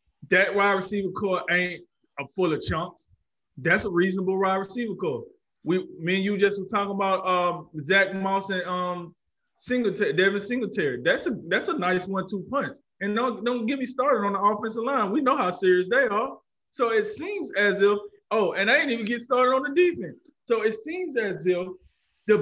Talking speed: 200 wpm